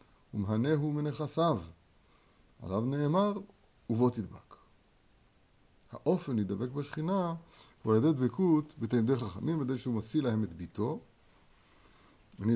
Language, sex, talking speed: Hebrew, male, 105 wpm